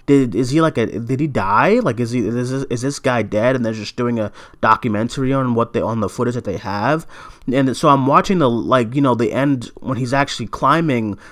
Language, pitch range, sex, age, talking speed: English, 115-145 Hz, male, 30-49, 245 wpm